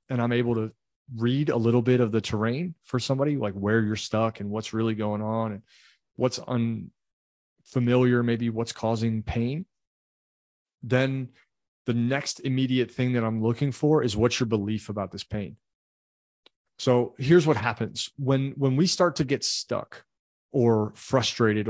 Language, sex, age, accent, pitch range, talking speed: English, male, 30-49, American, 110-135 Hz, 160 wpm